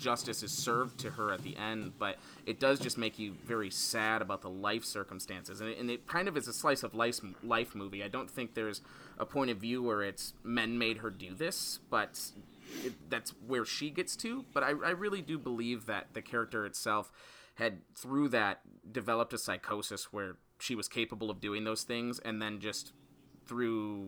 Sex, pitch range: male, 105-135 Hz